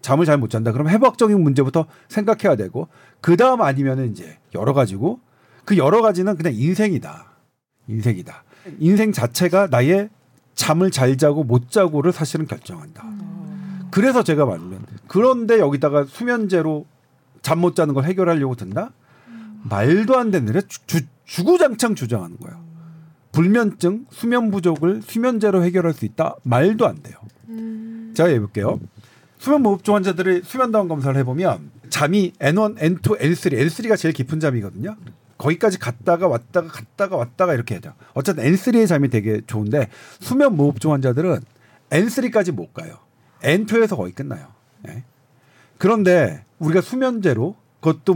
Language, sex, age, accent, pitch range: Korean, male, 50-69, native, 135-195 Hz